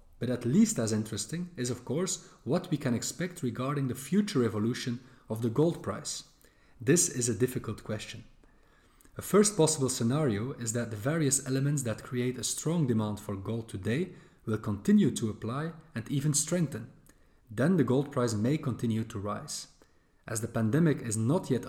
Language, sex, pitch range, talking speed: English, male, 110-150 Hz, 175 wpm